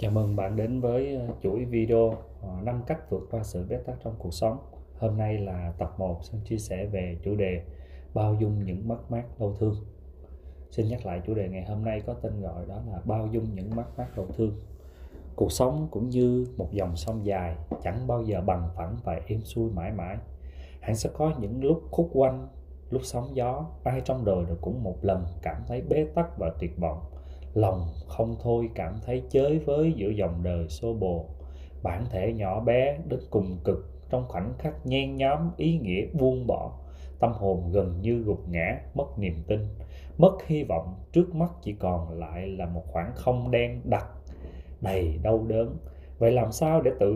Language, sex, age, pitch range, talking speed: Vietnamese, male, 20-39, 85-120 Hz, 195 wpm